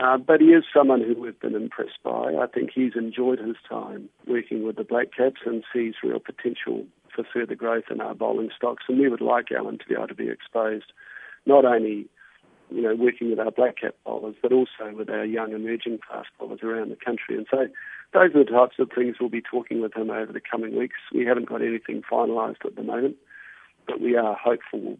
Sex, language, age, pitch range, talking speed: male, English, 40-59, 115-125 Hz, 225 wpm